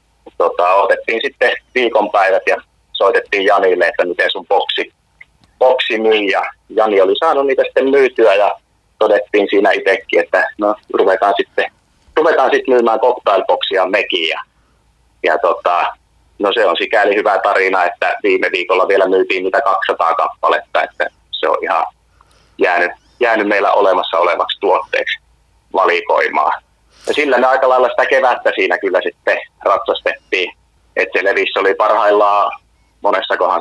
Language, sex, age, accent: Finnish, male, 30-49, native